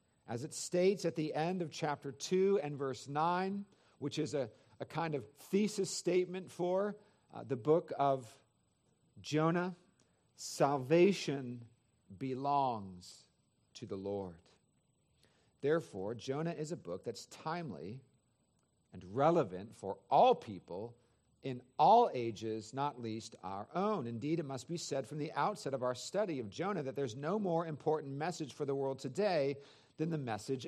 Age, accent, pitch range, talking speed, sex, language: 50-69, American, 130-180 Hz, 150 wpm, male, English